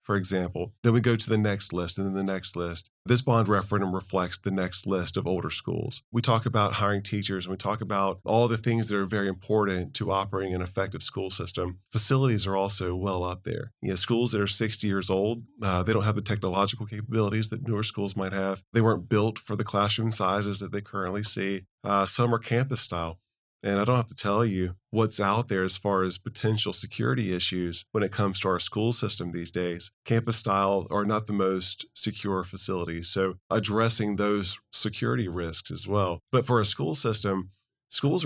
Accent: American